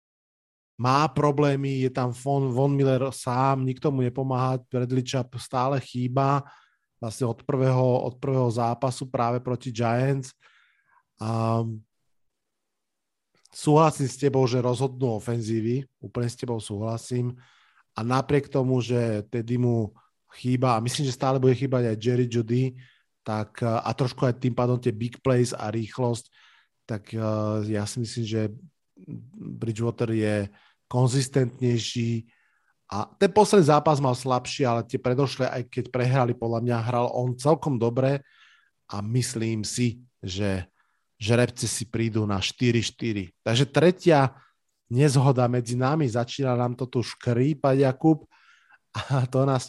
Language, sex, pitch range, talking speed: Slovak, male, 115-135 Hz, 135 wpm